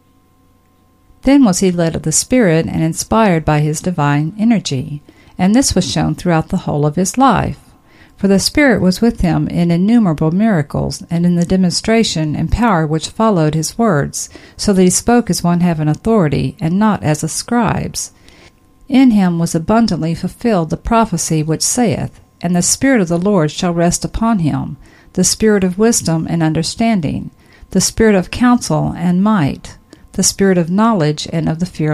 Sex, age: female, 50-69